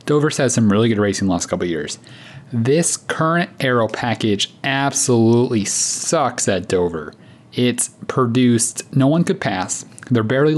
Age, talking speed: 30-49, 155 wpm